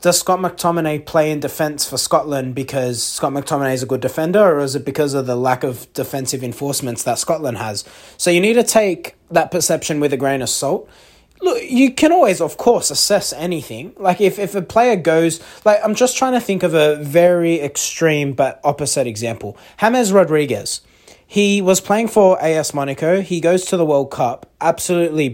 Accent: Australian